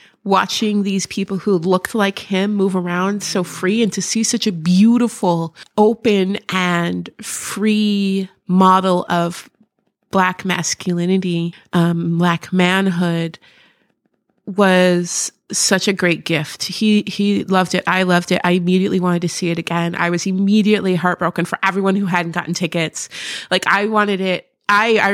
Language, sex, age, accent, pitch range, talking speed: English, female, 30-49, American, 180-210 Hz, 145 wpm